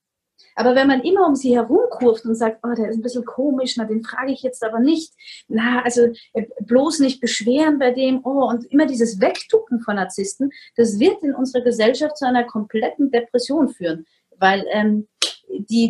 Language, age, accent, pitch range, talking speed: German, 30-49, German, 220-275 Hz, 185 wpm